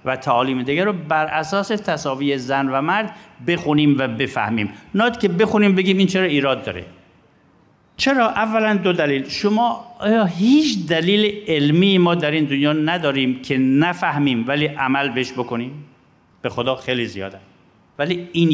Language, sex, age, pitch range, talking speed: Persian, male, 50-69, 135-190 Hz, 150 wpm